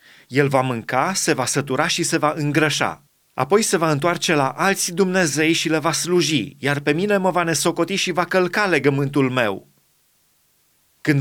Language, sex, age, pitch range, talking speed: Romanian, male, 30-49, 140-180 Hz, 175 wpm